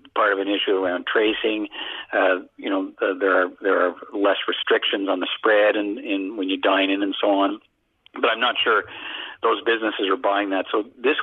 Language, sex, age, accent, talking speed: English, male, 50-69, American, 205 wpm